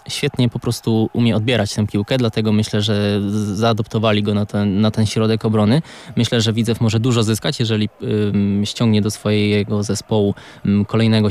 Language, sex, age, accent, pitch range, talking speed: Polish, male, 20-39, native, 105-115 Hz, 160 wpm